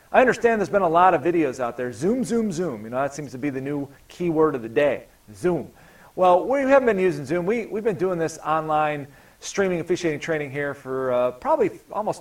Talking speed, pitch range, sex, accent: 225 wpm, 140-175 Hz, male, American